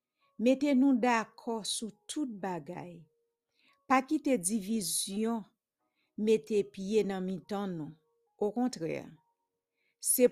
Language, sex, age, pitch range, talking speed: English, female, 50-69, 185-245 Hz, 100 wpm